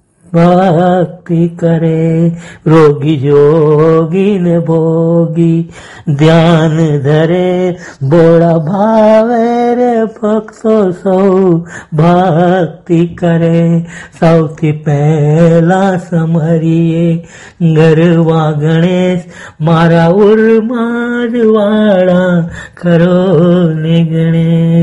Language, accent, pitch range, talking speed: Gujarati, native, 165-180 Hz, 35 wpm